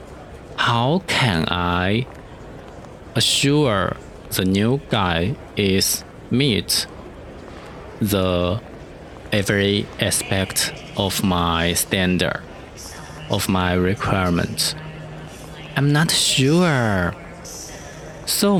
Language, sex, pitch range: Chinese, male, 95-120 Hz